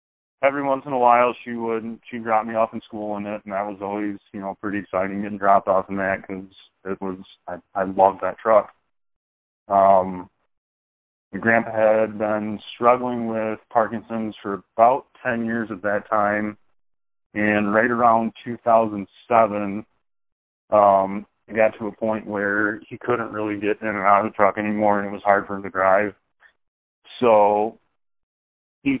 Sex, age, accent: male, 30-49, American